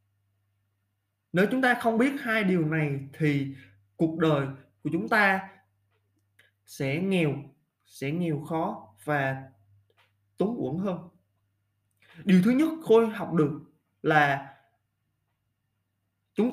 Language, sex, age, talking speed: English, male, 20-39, 115 wpm